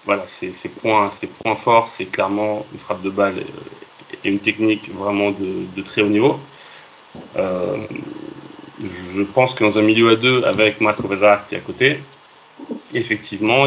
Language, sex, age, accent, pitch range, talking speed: French, male, 30-49, French, 100-110 Hz, 170 wpm